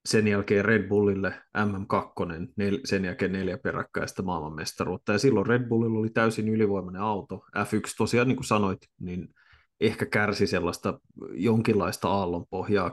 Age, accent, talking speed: 30-49, native, 135 wpm